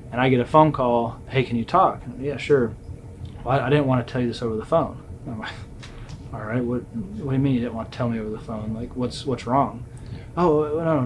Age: 30-49